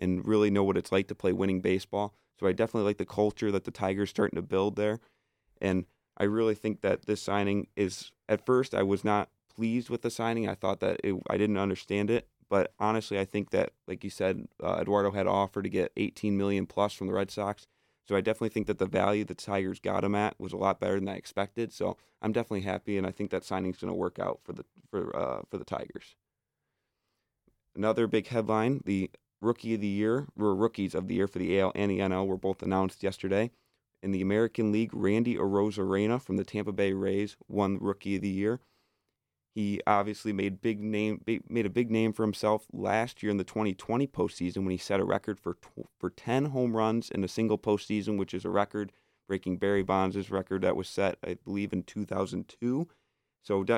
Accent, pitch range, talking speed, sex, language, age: American, 95-110 Hz, 215 wpm, male, English, 20-39